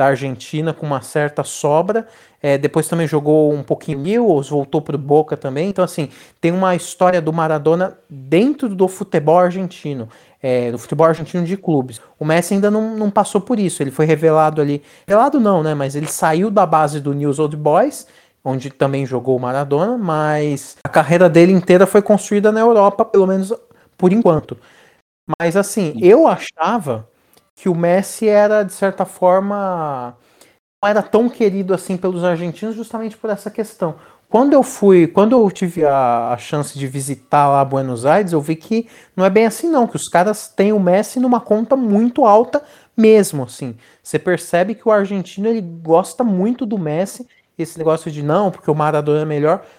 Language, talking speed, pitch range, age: Portuguese, 180 wpm, 150-210 Hz, 30-49